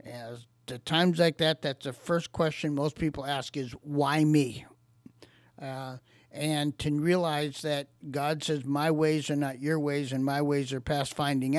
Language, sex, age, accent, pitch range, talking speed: English, male, 50-69, American, 130-160 Hz, 175 wpm